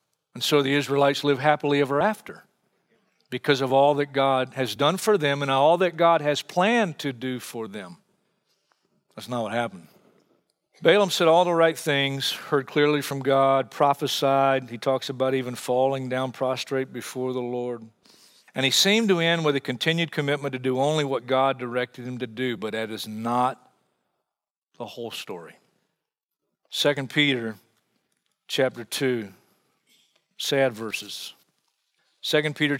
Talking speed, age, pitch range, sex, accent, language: 155 wpm, 50-69, 125-145 Hz, male, American, English